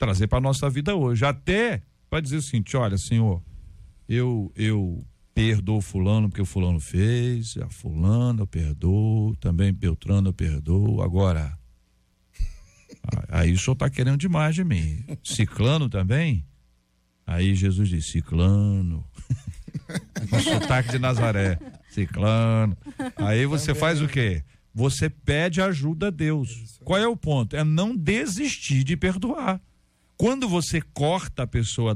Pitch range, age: 95-135 Hz, 50-69